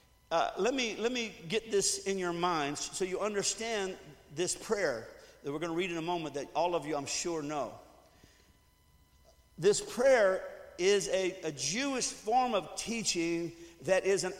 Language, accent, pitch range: English, American, 145-195 Hz